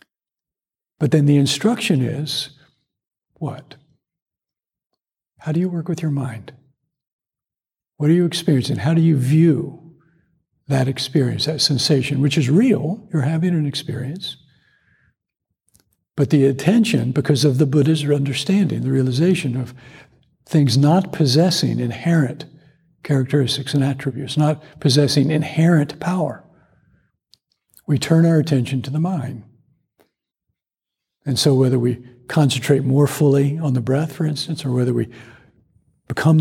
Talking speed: 125 wpm